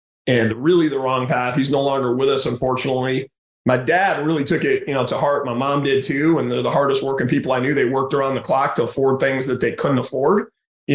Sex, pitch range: male, 135-155 Hz